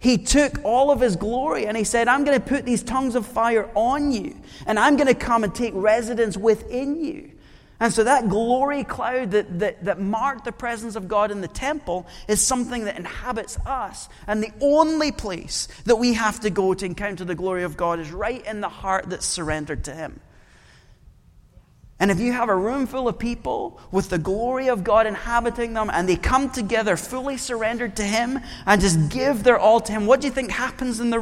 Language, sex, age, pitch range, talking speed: English, male, 30-49, 195-250 Hz, 215 wpm